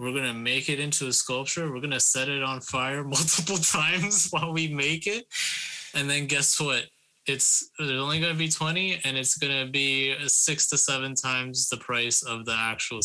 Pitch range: 125-155 Hz